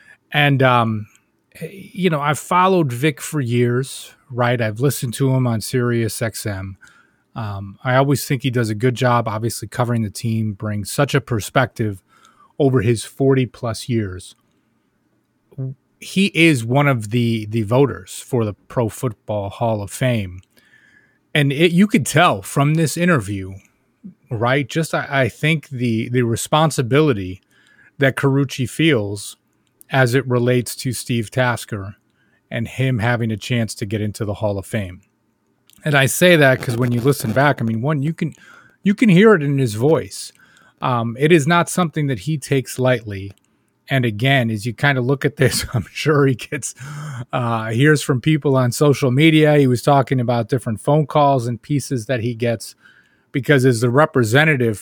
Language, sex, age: English, male, 30-49